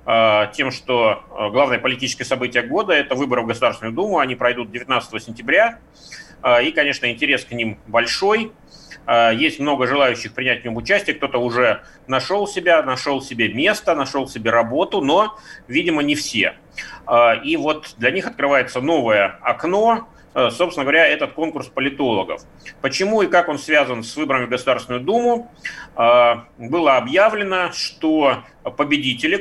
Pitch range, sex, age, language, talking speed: 120-200 Hz, male, 30-49, Russian, 140 wpm